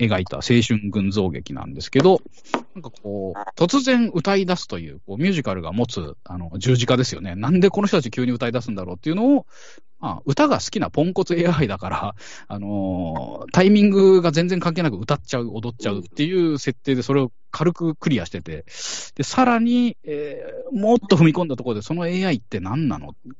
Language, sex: Japanese, male